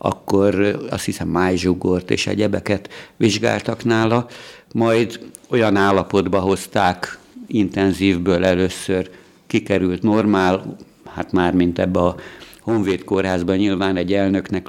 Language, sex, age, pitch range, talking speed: Hungarian, male, 60-79, 95-105 Hz, 100 wpm